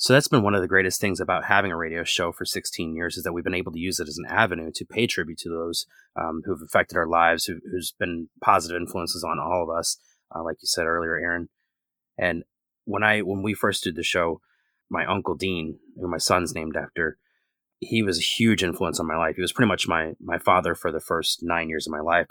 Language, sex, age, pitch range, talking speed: English, male, 30-49, 85-95 Hz, 245 wpm